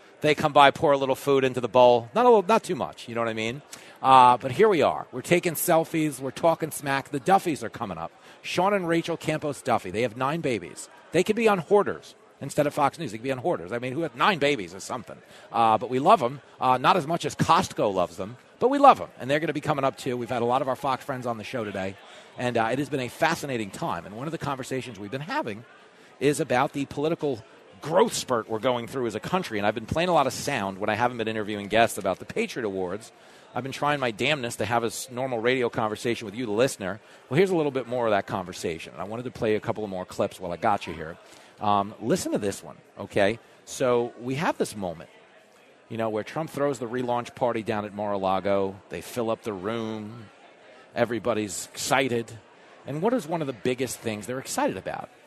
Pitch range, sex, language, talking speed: 110-150 Hz, male, English, 250 wpm